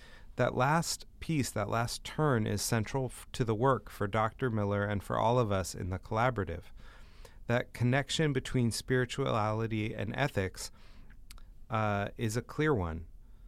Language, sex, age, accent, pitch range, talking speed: English, male, 30-49, American, 100-125 Hz, 145 wpm